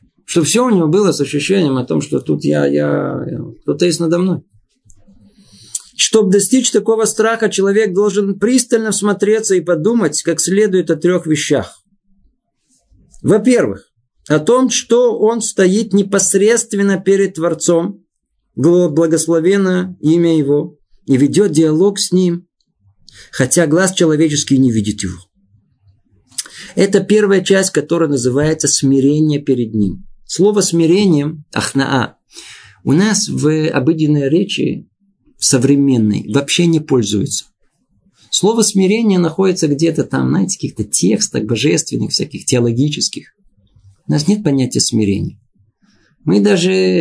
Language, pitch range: Russian, 130-195 Hz